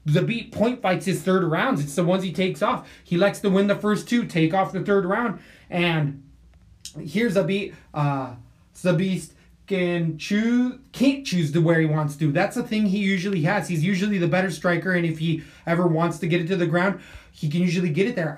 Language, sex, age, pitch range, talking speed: English, male, 20-39, 165-200 Hz, 225 wpm